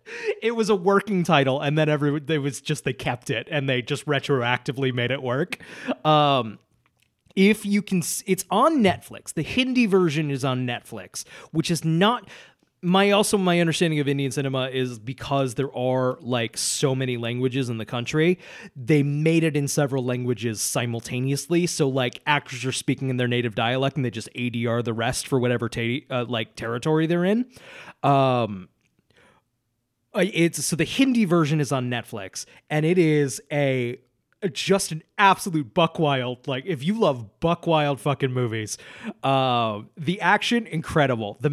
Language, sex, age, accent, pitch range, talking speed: English, male, 30-49, American, 130-180 Hz, 170 wpm